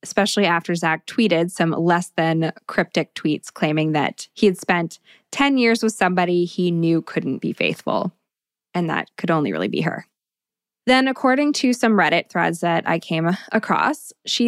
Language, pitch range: English, 170-220 Hz